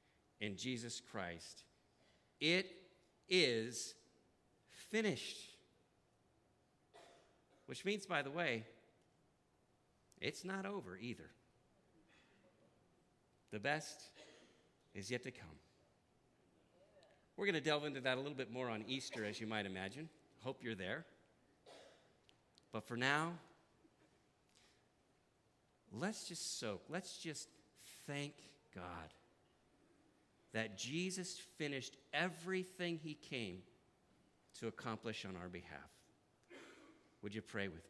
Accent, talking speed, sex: American, 105 wpm, male